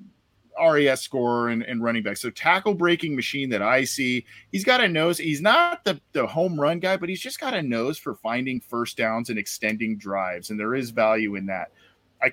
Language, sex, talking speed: English, male, 215 wpm